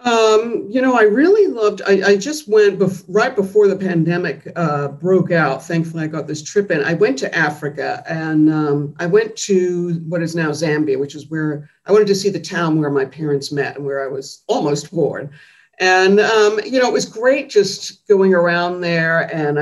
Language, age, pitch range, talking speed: English, 50-69, 150-185 Hz, 205 wpm